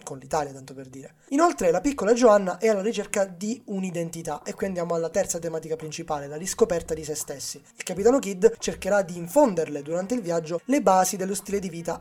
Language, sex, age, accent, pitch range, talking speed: Italian, male, 20-39, native, 160-230 Hz, 205 wpm